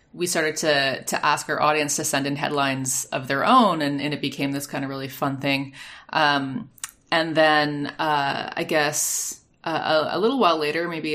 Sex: female